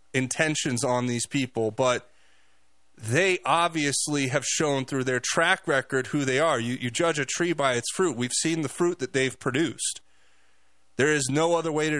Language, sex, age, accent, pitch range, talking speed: English, male, 30-49, American, 120-160 Hz, 185 wpm